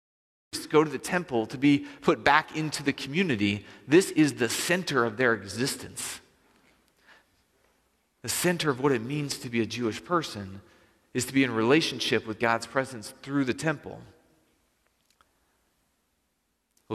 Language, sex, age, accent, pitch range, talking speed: English, male, 30-49, American, 115-135 Hz, 145 wpm